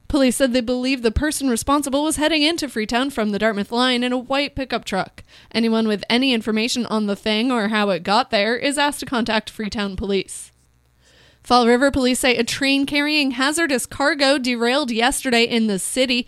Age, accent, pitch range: 20-39, American, 220-265 Hz